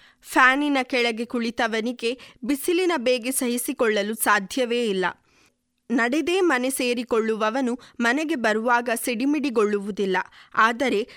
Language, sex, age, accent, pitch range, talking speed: Kannada, female, 20-39, native, 220-285 Hz, 80 wpm